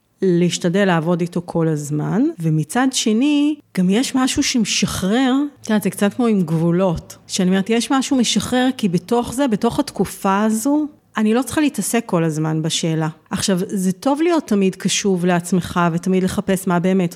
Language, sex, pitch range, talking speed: Hebrew, female, 180-245 Hz, 165 wpm